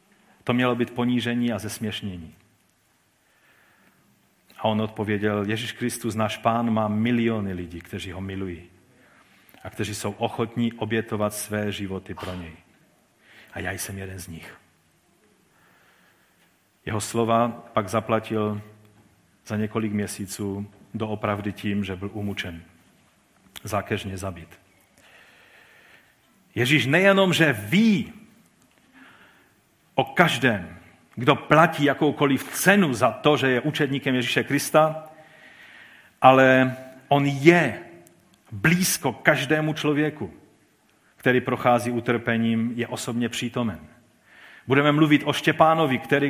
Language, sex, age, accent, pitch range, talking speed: Czech, male, 40-59, native, 105-150 Hz, 105 wpm